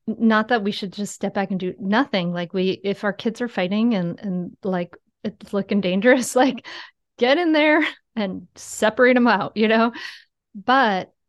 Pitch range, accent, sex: 185-245 Hz, American, female